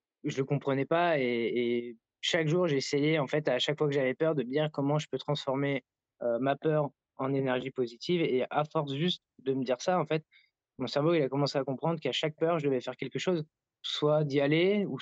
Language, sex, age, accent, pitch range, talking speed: French, male, 20-39, French, 130-155 Hz, 240 wpm